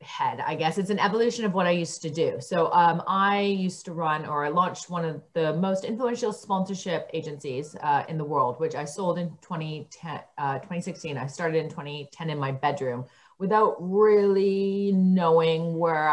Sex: female